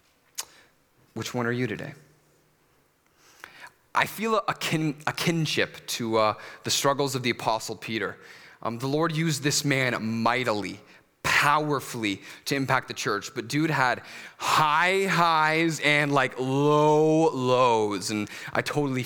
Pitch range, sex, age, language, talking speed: 115-150 Hz, male, 30-49, English, 130 wpm